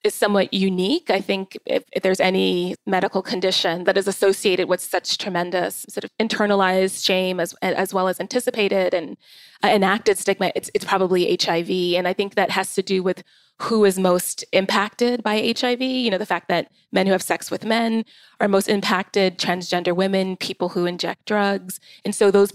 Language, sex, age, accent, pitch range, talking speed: English, female, 20-39, American, 185-210 Hz, 185 wpm